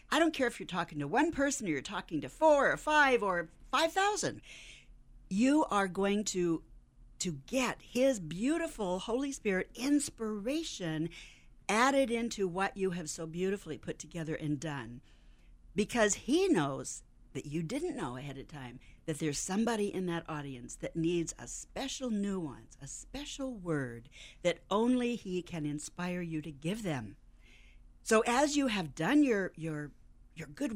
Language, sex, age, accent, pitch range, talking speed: English, female, 60-79, American, 150-235 Hz, 160 wpm